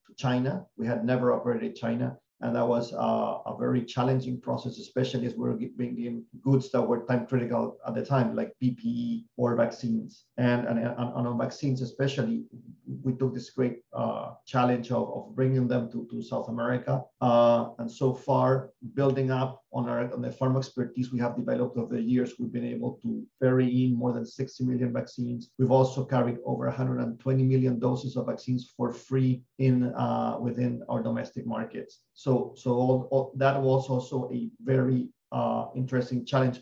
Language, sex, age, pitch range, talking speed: English, male, 40-59, 120-130 Hz, 180 wpm